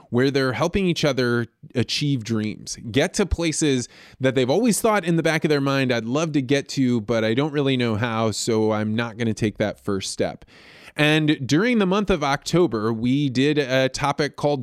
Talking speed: 205 wpm